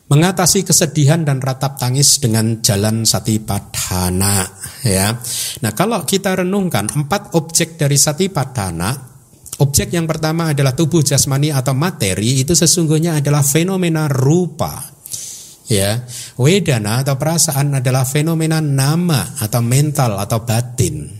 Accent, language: native, Indonesian